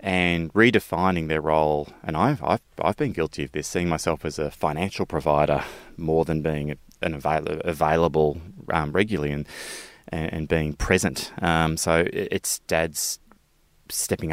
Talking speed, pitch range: 145 wpm, 75-95 Hz